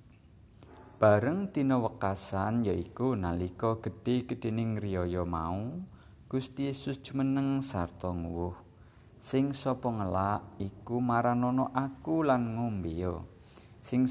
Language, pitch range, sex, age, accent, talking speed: Indonesian, 90-130 Hz, male, 50-69, native, 100 wpm